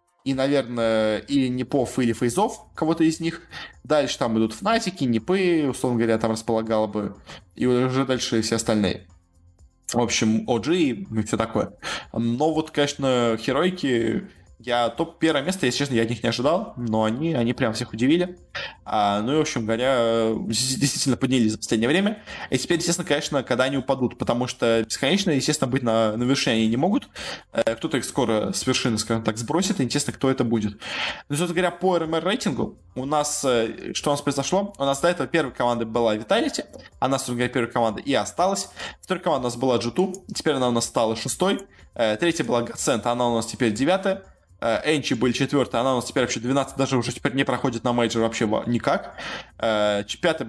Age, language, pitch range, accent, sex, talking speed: 20-39, Russian, 115-145 Hz, native, male, 185 wpm